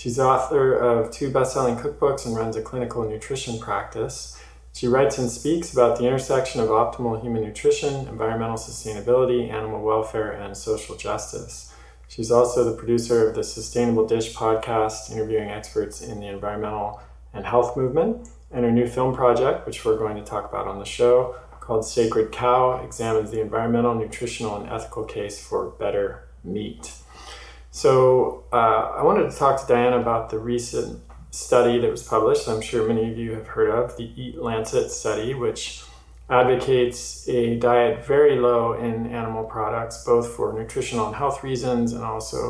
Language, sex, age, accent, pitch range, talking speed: English, male, 20-39, American, 110-125 Hz, 170 wpm